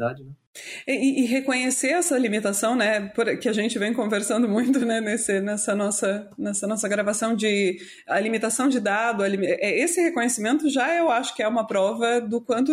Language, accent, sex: Portuguese, Brazilian, female